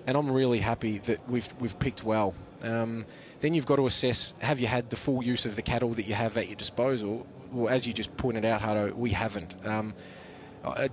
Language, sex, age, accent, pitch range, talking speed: English, male, 20-39, Australian, 110-125 Hz, 225 wpm